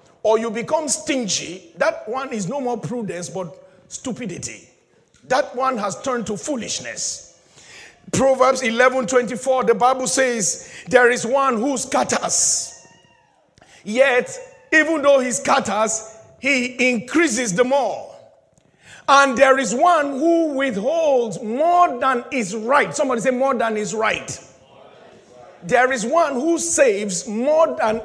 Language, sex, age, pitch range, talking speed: English, male, 50-69, 220-280 Hz, 130 wpm